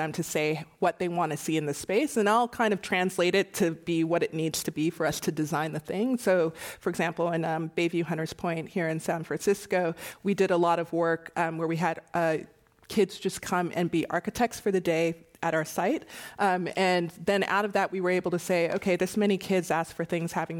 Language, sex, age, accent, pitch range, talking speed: English, female, 30-49, American, 165-200 Hz, 240 wpm